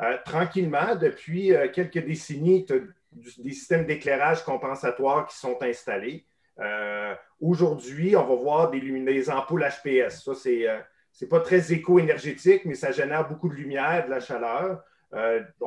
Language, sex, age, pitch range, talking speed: French, male, 40-59, 135-180 Hz, 155 wpm